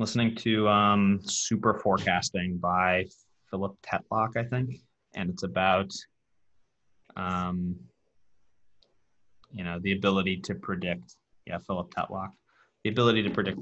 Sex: male